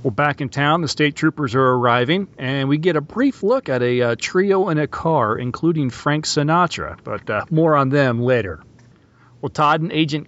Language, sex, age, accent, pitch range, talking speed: English, male, 40-59, American, 120-155 Hz, 205 wpm